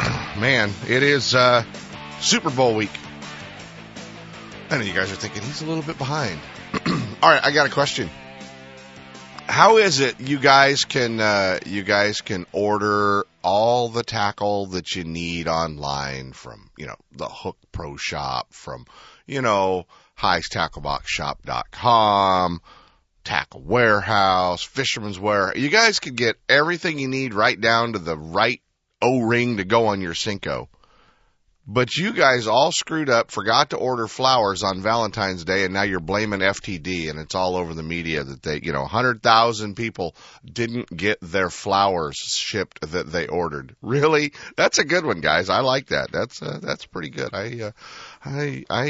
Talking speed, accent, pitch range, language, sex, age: 165 wpm, American, 90-125 Hz, English, male, 30-49